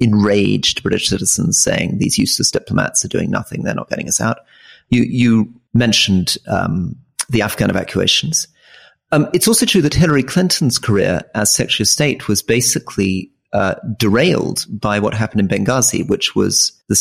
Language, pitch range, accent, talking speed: English, 105-130 Hz, British, 160 wpm